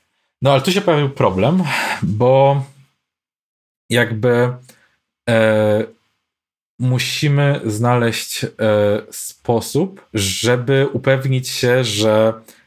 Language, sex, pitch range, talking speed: Polish, male, 110-130 Hz, 80 wpm